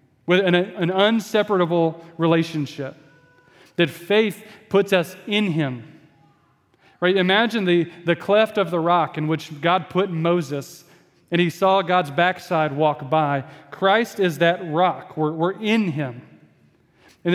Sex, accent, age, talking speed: male, American, 40-59, 140 wpm